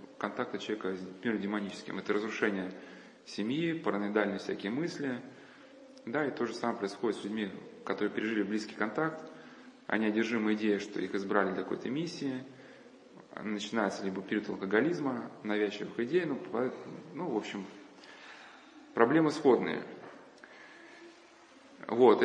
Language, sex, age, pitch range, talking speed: Russian, male, 20-39, 105-130 Hz, 125 wpm